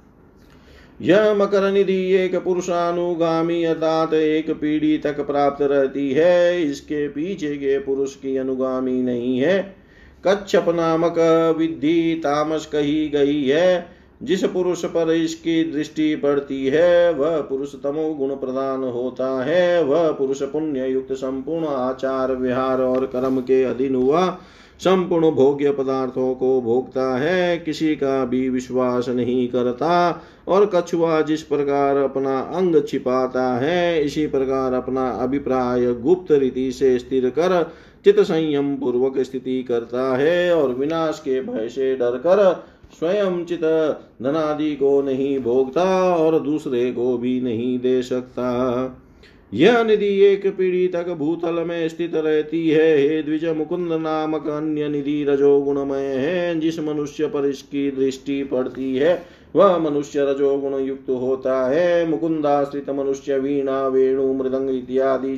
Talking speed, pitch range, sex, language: 105 wpm, 130-165 Hz, male, Hindi